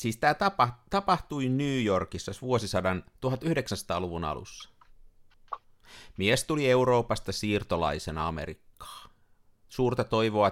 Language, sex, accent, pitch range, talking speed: Finnish, male, native, 100-130 Hz, 90 wpm